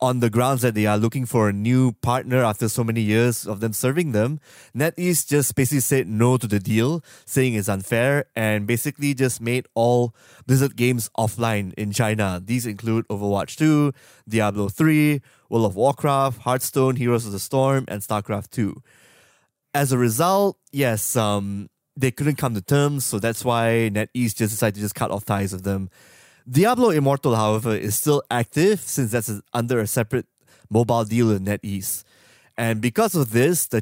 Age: 20-39